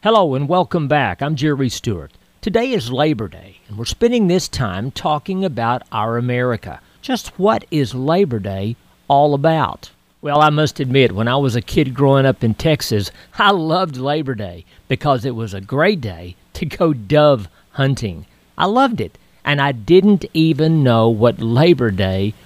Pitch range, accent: 115-175 Hz, American